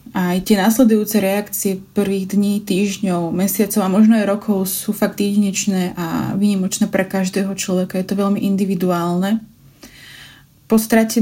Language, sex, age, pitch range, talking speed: Slovak, female, 20-39, 185-210 Hz, 140 wpm